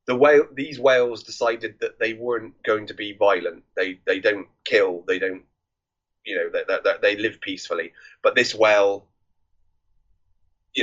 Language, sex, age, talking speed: English, male, 30-49, 160 wpm